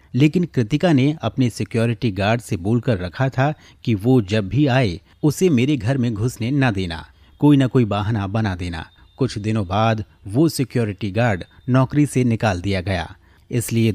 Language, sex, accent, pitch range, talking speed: Hindi, male, native, 100-135 Hz, 170 wpm